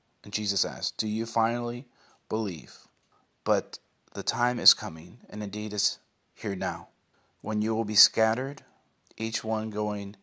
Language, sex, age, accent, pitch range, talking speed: English, male, 30-49, American, 100-110 Hz, 145 wpm